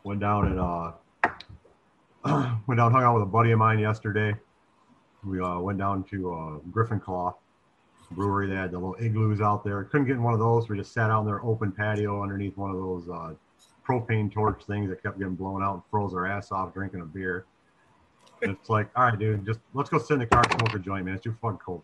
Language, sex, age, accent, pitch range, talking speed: English, male, 40-59, American, 95-115 Hz, 235 wpm